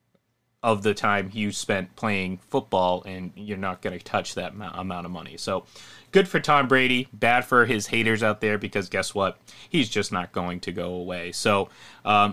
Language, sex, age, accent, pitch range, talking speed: English, male, 30-49, American, 95-115 Hz, 195 wpm